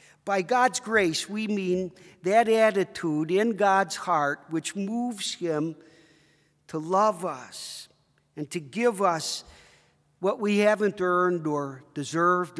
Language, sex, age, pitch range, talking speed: English, male, 50-69, 160-200 Hz, 125 wpm